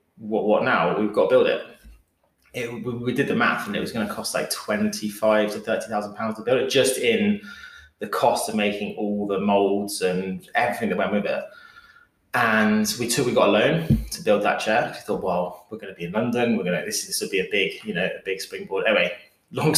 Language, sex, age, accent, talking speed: English, male, 20-39, British, 235 wpm